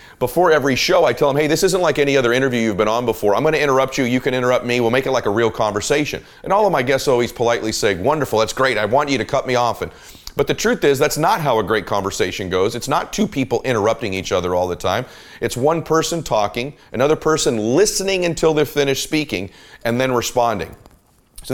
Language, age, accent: English, 40-59, American